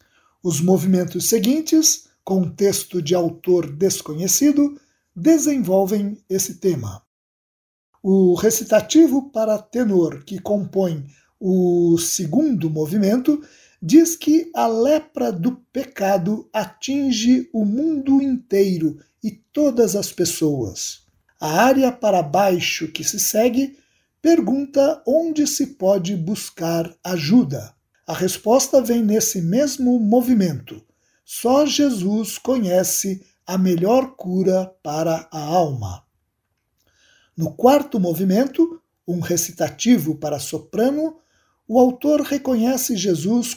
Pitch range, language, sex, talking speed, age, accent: 175-260 Hz, Portuguese, male, 100 wpm, 60-79, Brazilian